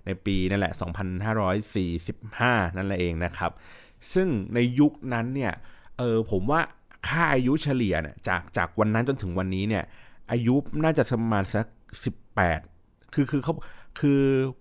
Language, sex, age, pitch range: Thai, male, 30-49, 95-120 Hz